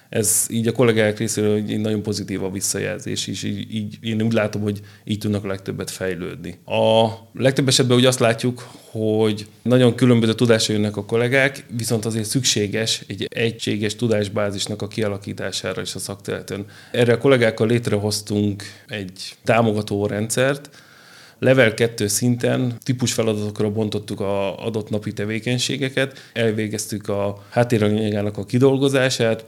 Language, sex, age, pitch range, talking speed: Hungarian, male, 30-49, 105-120 Hz, 140 wpm